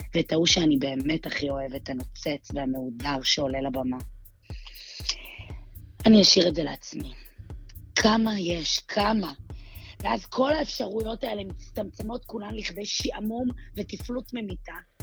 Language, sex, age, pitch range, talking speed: Hebrew, female, 20-39, 150-215 Hz, 115 wpm